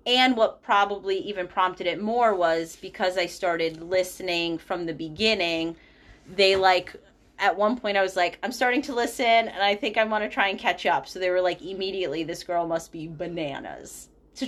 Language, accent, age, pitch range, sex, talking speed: English, American, 30-49, 170-215 Hz, female, 200 wpm